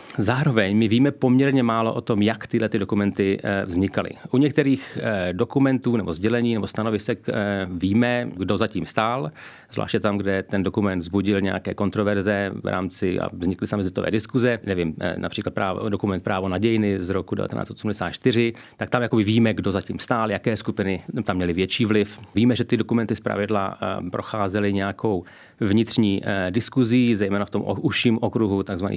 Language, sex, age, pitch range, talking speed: Slovak, male, 40-59, 100-120 Hz, 155 wpm